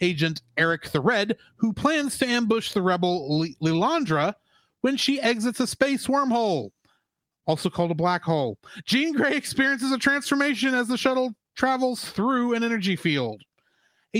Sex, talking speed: male, 150 wpm